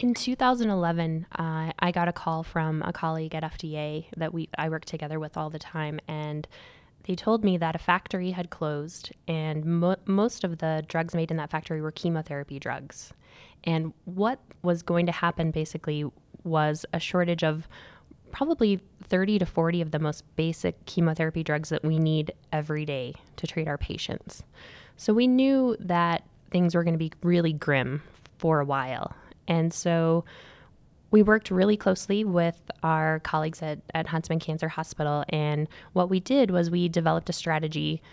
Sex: female